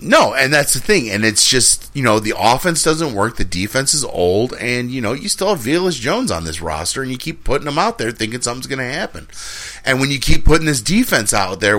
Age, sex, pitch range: 30-49, male, 95-130 Hz